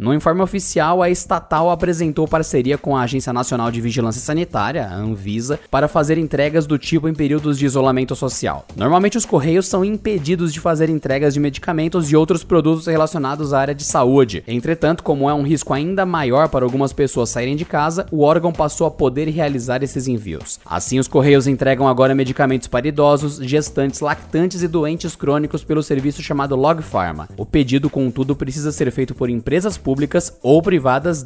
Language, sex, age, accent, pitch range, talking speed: Portuguese, male, 20-39, Brazilian, 125-160 Hz, 180 wpm